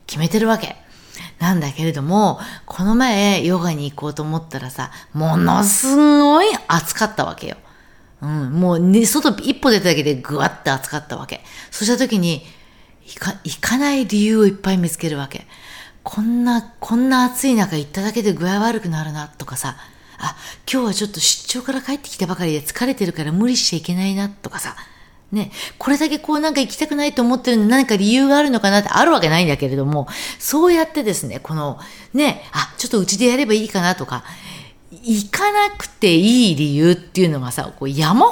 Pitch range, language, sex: 155-240 Hz, Japanese, female